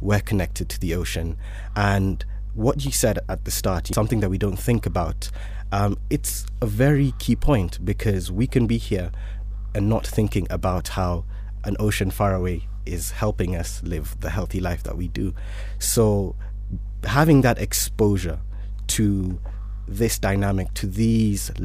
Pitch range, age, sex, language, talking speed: 95-105 Hz, 20-39, male, English, 160 wpm